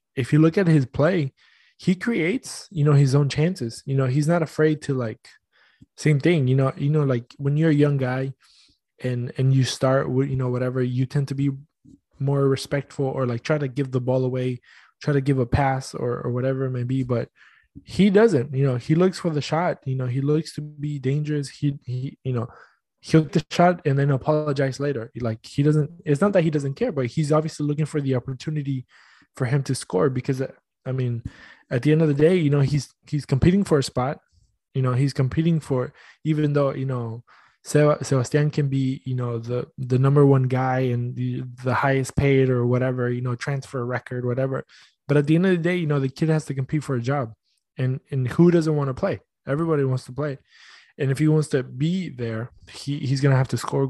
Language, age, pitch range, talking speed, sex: English, 20-39, 130-150 Hz, 225 wpm, male